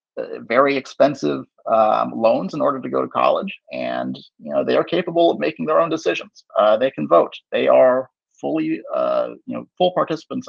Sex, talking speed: male, 190 wpm